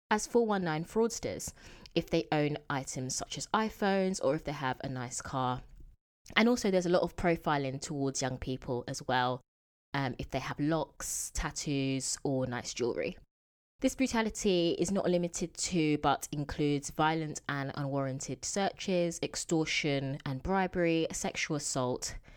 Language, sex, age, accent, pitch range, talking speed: English, female, 20-39, British, 130-175 Hz, 150 wpm